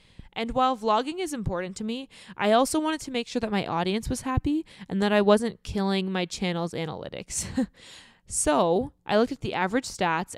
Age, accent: 20-39, American